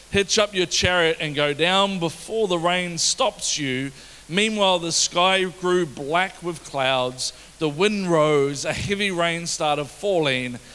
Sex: male